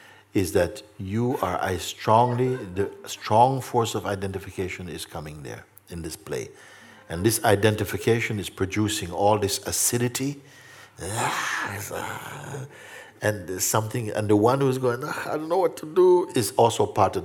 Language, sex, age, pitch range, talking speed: English, male, 60-79, 100-135 Hz, 150 wpm